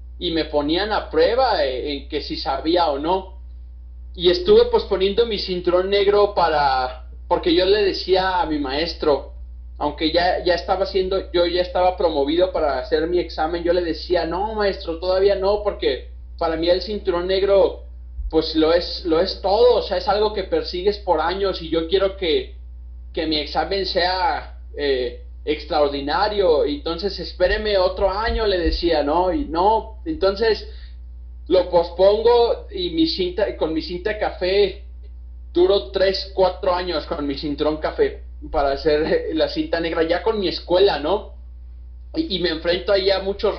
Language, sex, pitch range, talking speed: Spanish, male, 150-200 Hz, 165 wpm